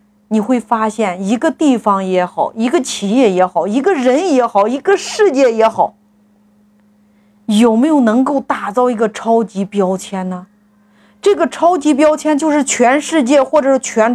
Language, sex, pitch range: Chinese, female, 210-290 Hz